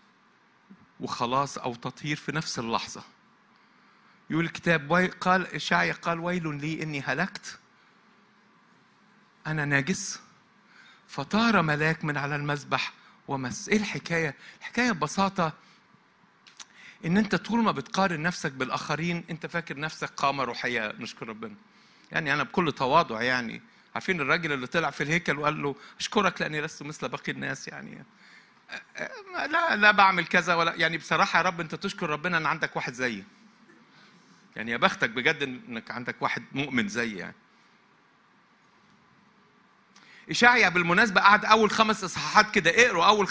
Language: Arabic